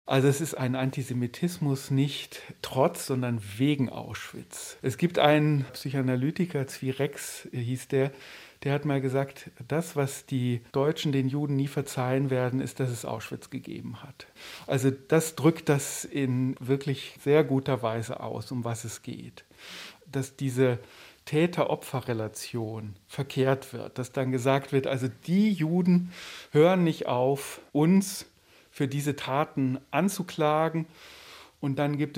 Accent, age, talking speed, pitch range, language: German, 40-59, 135 wpm, 125-145 Hz, German